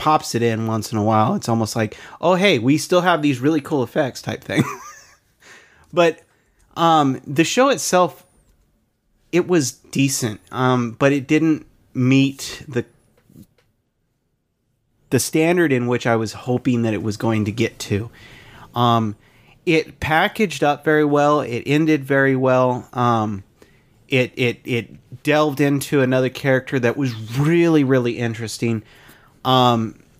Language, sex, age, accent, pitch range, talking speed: English, male, 30-49, American, 115-135 Hz, 145 wpm